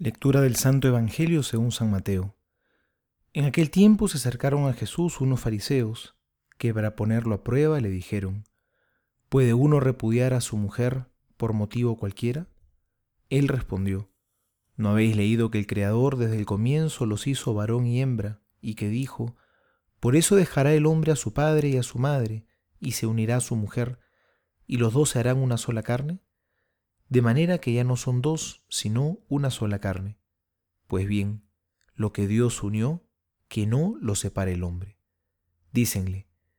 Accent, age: Argentinian, 30-49